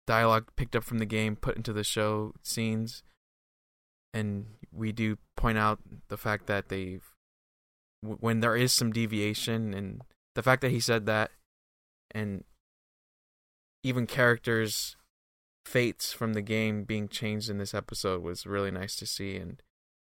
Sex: male